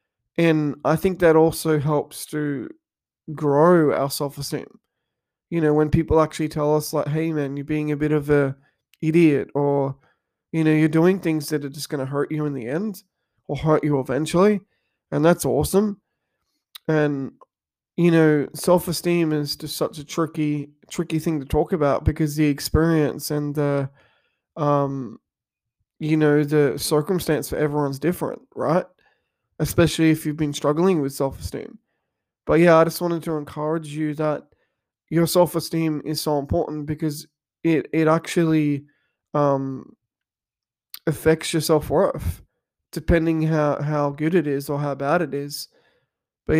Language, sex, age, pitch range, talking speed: English, male, 20-39, 145-160 Hz, 155 wpm